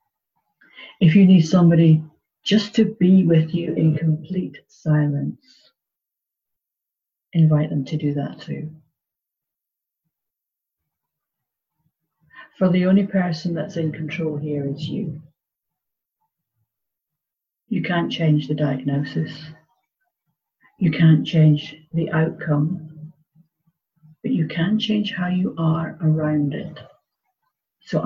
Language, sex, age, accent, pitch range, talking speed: English, female, 50-69, British, 150-180 Hz, 105 wpm